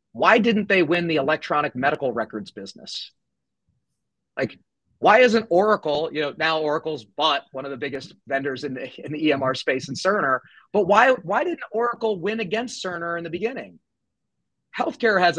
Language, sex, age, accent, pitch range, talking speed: English, male, 30-49, American, 145-190 Hz, 170 wpm